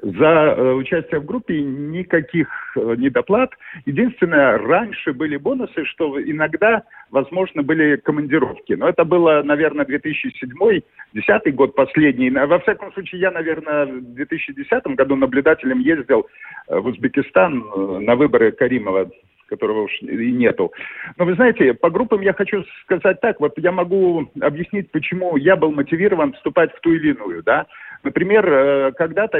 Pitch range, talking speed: 145-225 Hz, 135 wpm